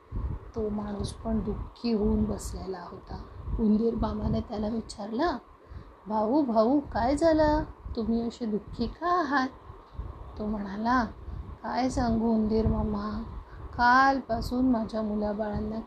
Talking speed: 45 wpm